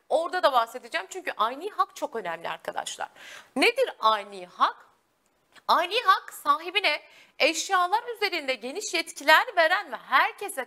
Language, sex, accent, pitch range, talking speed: Turkish, female, native, 265-410 Hz, 125 wpm